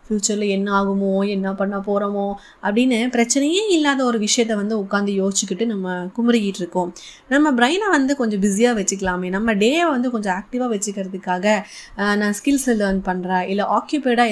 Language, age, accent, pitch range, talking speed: Tamil, 20-39, native, 200-265 Hz, 145 wpm